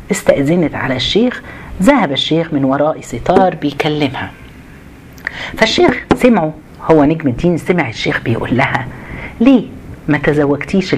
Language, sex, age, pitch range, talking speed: Arabic, female, 50-69, 135-190 Hz, 115 wpm